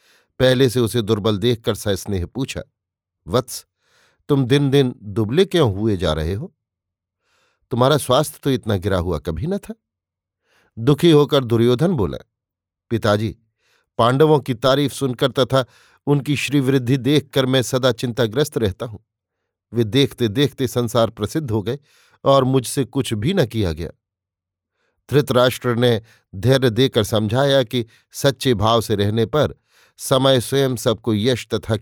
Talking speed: 140 wpm